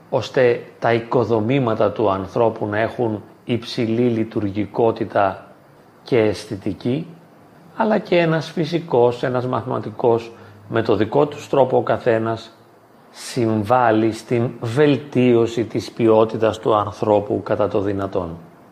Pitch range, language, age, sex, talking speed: 105-130 Hz, Greek, 40-59, male, 110 wpm